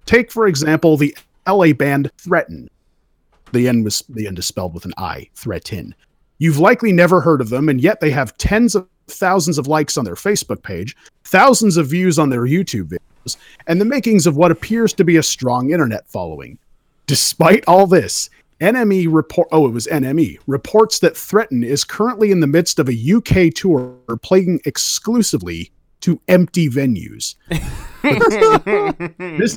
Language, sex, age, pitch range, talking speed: English, male, 40-59, 135-190 Hz, 170 wpm